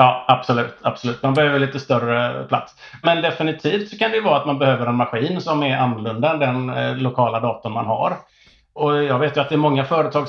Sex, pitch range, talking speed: male, 120-155 Hz, 215 wpm